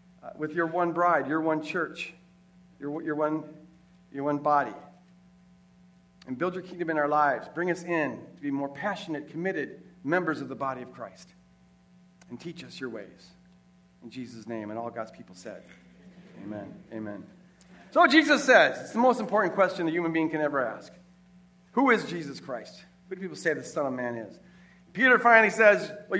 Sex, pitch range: male, 165-230 Hz